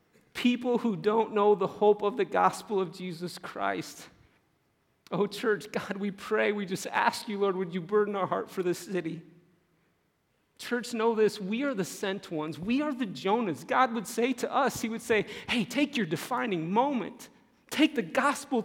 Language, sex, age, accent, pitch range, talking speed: English, male, 40-59, American, 165-225 Hz, 185 wpm